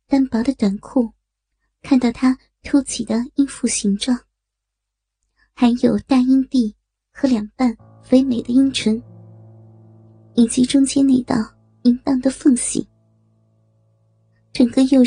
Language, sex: Chinese, male